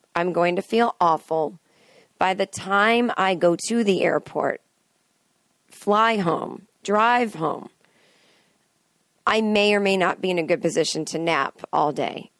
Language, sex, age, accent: English, female, 40-59, American